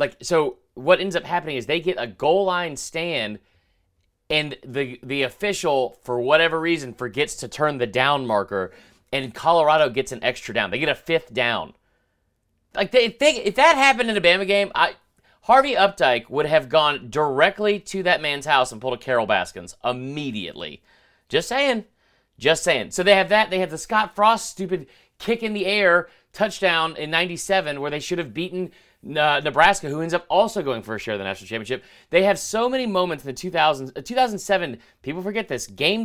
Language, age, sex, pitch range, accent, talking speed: English, 30-49, male, 140-200 Hz, American, 195 wpm